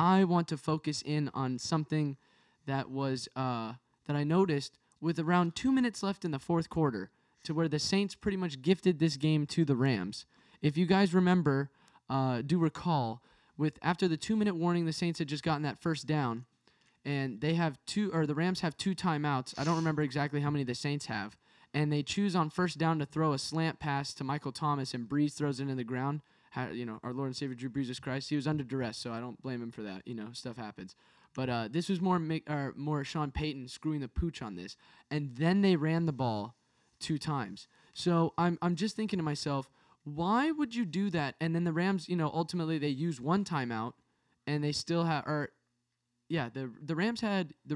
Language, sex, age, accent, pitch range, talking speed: English, male, 10-29, American, 135-170 Hz, 220 wpm